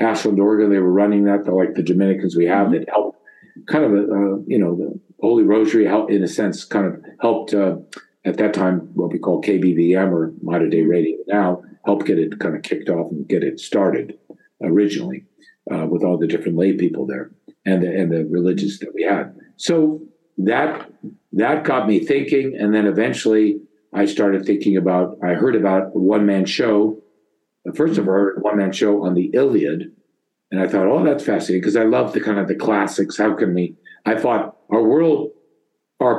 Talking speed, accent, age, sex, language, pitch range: 200 wpm, American, 50-69, male, English, 95-105 Hz